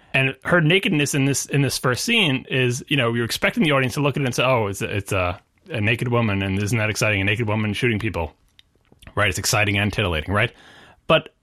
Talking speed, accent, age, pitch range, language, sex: 240 wpm, American, 30-49, 115-160 Hz, English, male